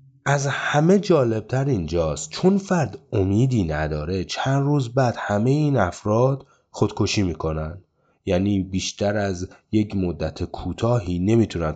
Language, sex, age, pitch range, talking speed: Persian, male, 30-49, 80-110 Hz, 115 wpm